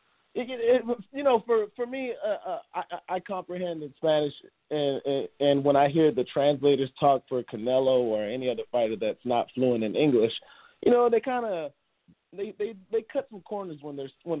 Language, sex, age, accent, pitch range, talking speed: English, male, 20-39, American, 130-180 Hz, 200 wpm